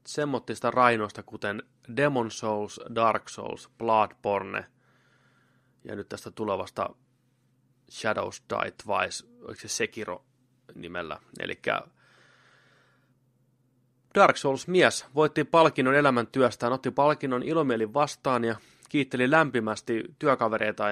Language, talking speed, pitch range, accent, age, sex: Finnish, 100 wpm, 110-130 Hz, native, 20-39, male